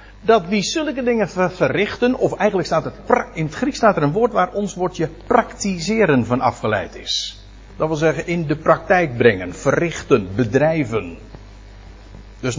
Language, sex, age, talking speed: Dutch, male, 50-69, 155 wpm